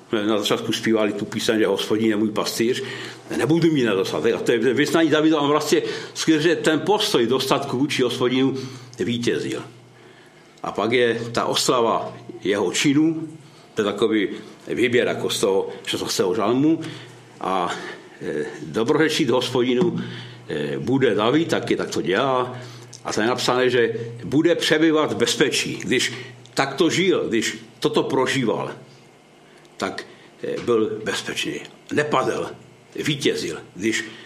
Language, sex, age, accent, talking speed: Czech, male, 60-79, native, 130 wpm